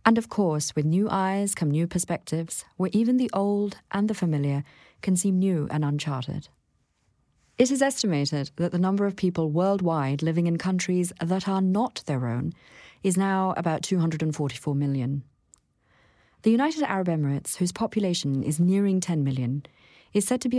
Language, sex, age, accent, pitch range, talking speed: English, female, 40-59, British, 145-195 Hz, 165 wpm